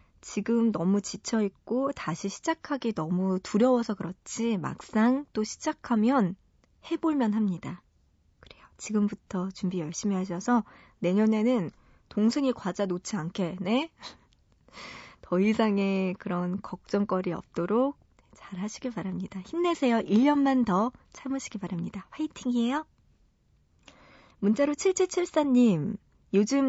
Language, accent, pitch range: Korean, native, 185-245 Hz